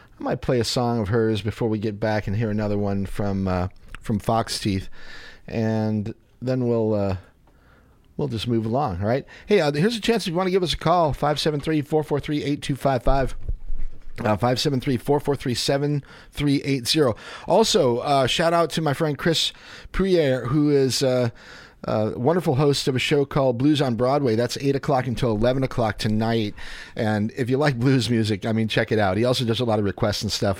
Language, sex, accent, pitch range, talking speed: English, male, American, 105-140 Hz, 185 wpm